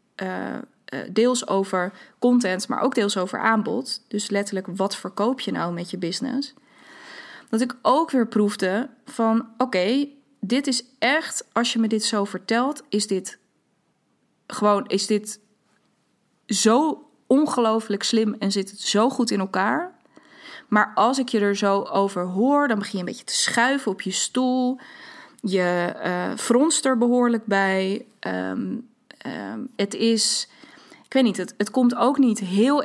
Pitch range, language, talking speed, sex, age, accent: 200-250 Hz, Dutch, 160 wpm, female, 20-39, Dutch